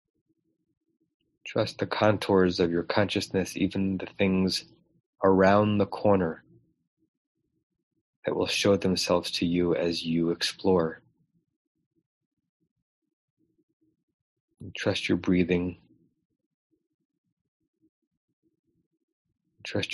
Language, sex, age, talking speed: English, male, 30-49, 75 wpm